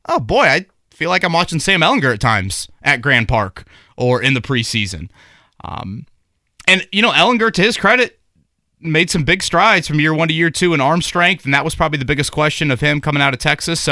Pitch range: 120-155 Hz